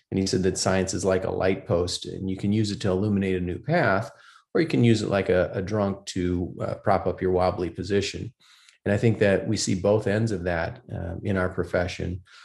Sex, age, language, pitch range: male, 40-59, English, 90-105 Hz